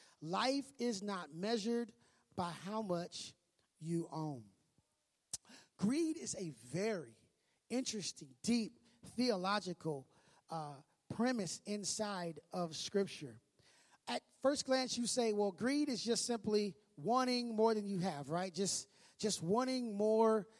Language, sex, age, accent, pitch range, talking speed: English, male, 30-49, American, 185-245 Hz, 120 wpm